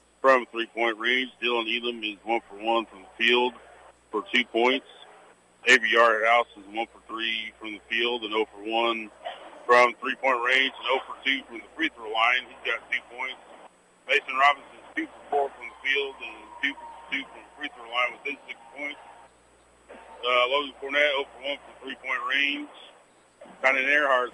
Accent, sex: American, male